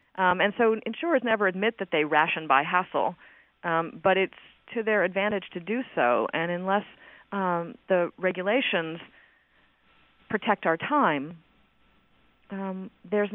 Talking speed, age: 135 wpm, 40-59